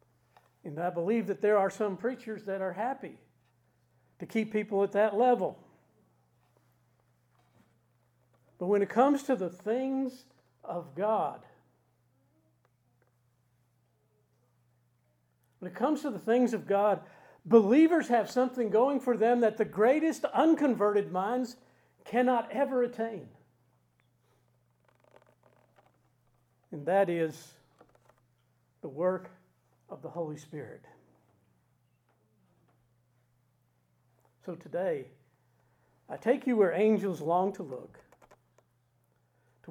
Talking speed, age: 105 wpm, 50-69